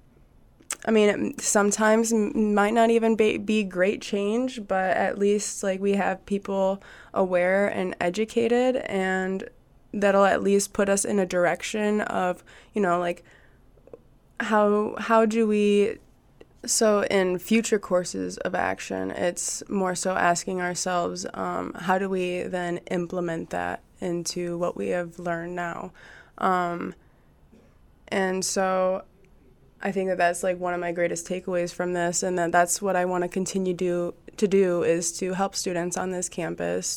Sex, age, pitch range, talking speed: female, 20-39, 180-200 Hz, 155 wpm